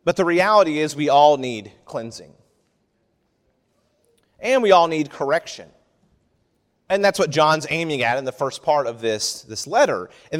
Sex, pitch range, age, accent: male, 140-195 Hz, 30-49, American